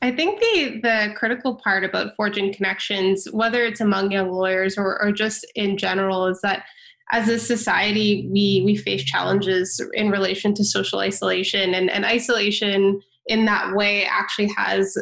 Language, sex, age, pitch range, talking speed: English, female, 20-39, 195-220 Hz, 165 wpm